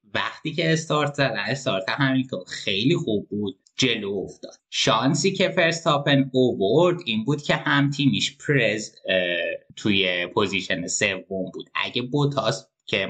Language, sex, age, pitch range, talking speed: Persian, male, 20-39, 95-135 Hz, 130 wpm